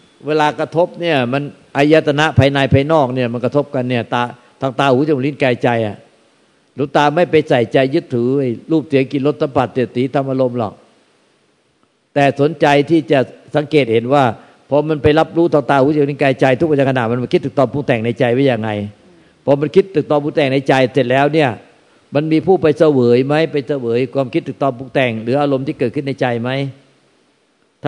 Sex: male